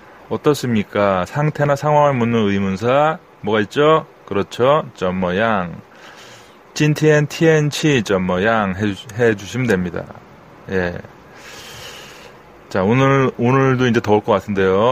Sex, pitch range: male, 100-135 Hz